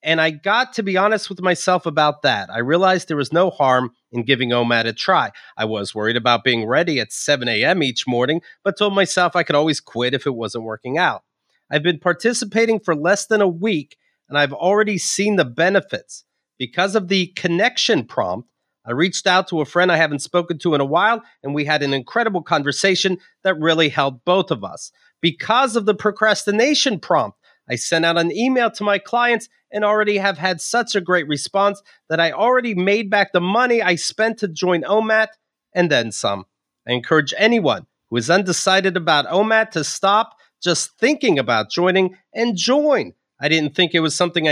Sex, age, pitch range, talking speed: male, 30-49, 150-210 Hz, 195 wpm